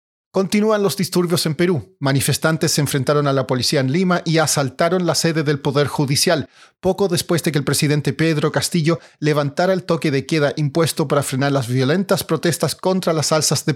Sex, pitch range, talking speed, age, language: male, 140-175 Hz, 190 wpm, 40-59, Spanish